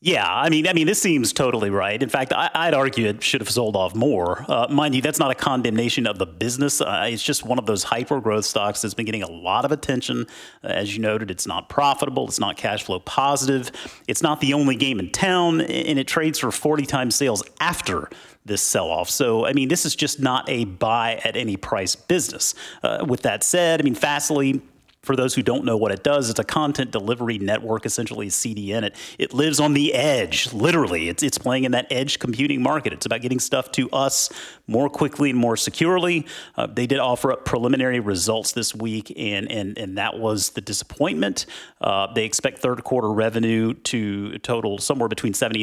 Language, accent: English, American